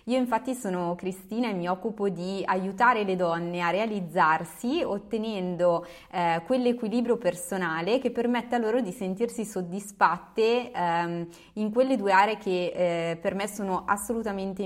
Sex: female